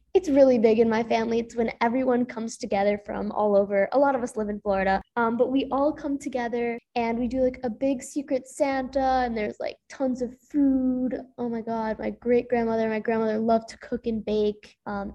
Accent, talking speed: American, 220 wpm